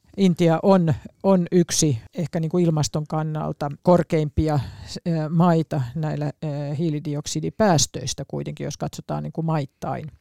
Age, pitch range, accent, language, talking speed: 50-69, 145-175 Hz, native, Finnish, 90 wpm